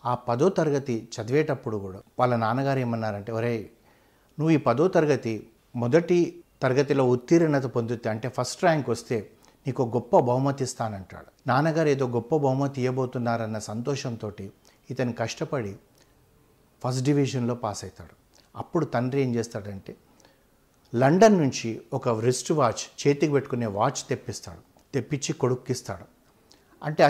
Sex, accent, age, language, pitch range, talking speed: male, native, 60-79, Telugu, 115-140 Hz, 115 wpm